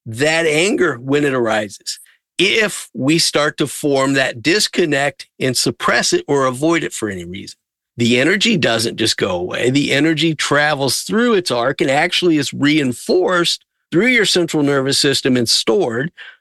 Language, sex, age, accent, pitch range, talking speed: English, male, 50-69, American, 120-155 Hz, 160 wpm